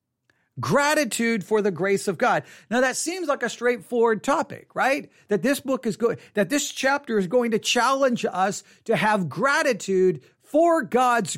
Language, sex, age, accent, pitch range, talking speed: English, male, 50-69, American, 175-245 Hz, 170 wpm